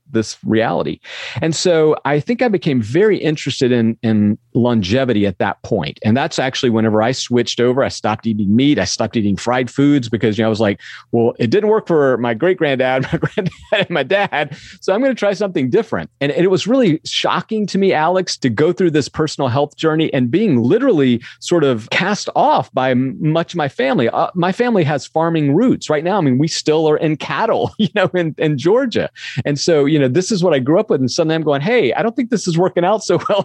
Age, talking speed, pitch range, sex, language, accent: 40-59, 240 wpm, 120-170 Hz, male, English, American